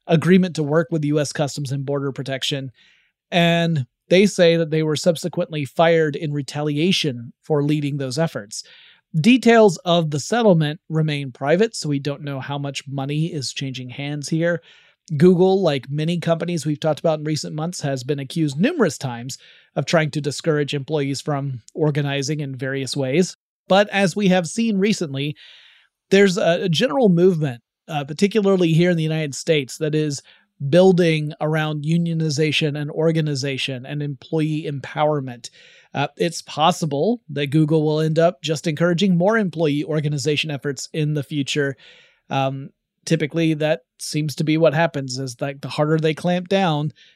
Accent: American